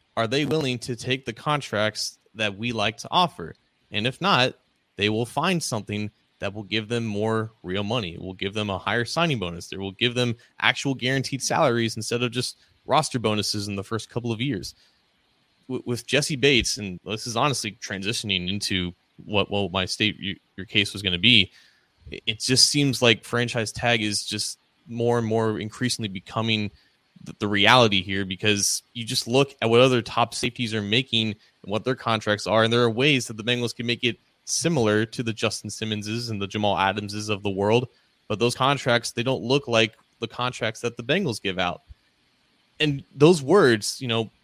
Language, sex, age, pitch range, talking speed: English, male, 20-39, 105-140 Hz, 195 wpm